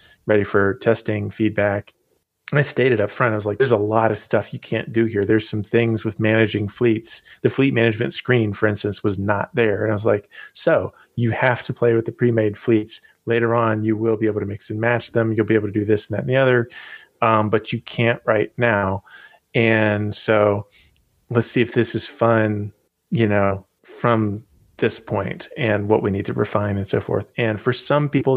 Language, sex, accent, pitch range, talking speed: English, male, American, 105-120 Hz, 220 wpm